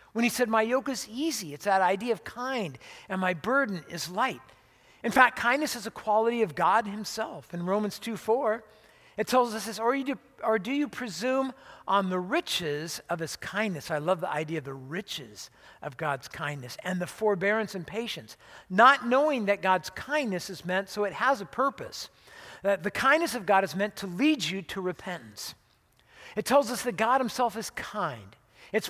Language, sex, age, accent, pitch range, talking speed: English, male, 50-69, American, 185-235 Hz, 195 wpm